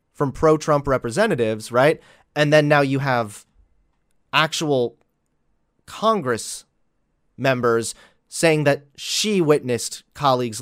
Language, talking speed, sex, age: English, 95 wpm, male, 30-49